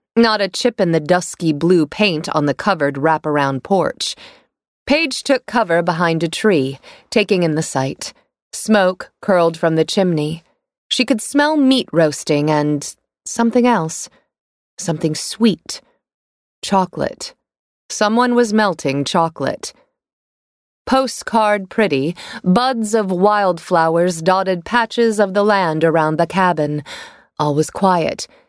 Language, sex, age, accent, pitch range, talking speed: English, female, 30-49, American, 160-230 Hz, 125 wpm